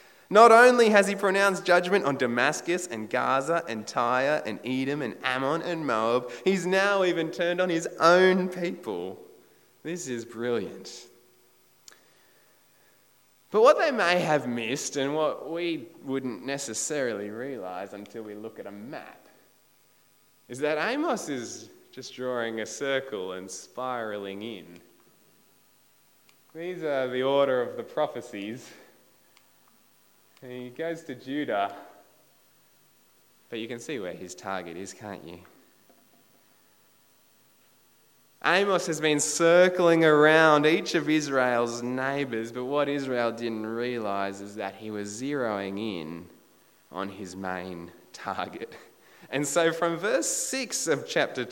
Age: 20-39